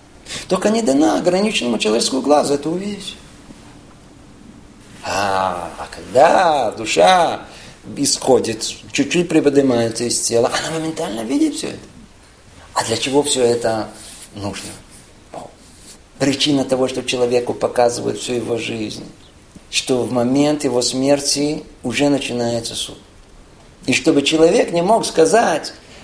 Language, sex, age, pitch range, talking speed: Russian, male, 50-69, 125-205 Hz, 115 wpm